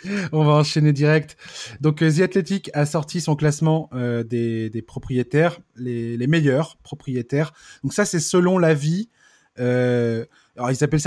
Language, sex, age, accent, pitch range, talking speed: French, male, 20-39, French, 125-165 Hz, 155 wpm